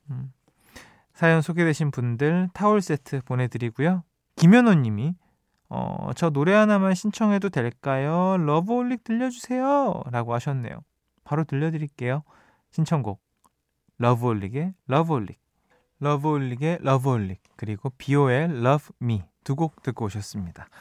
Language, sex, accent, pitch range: Korean, male, native, 125-185 Hz